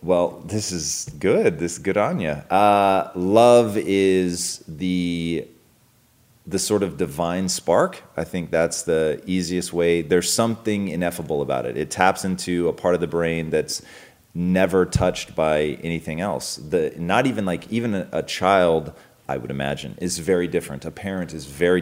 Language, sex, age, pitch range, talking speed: English, male, 30-49, 85-105 Hz, 170 wpm